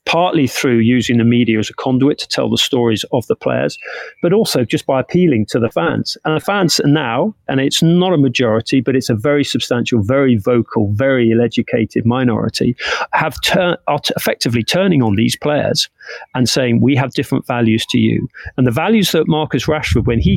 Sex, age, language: male, 40-59, English